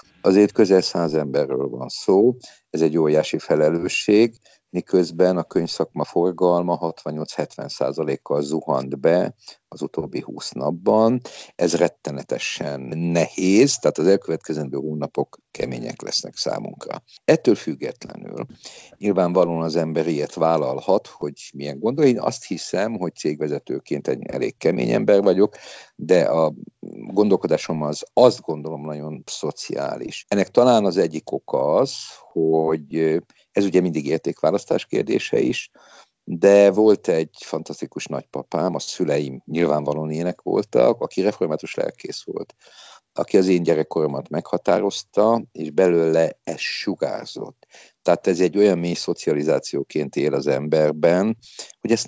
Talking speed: 120 wpm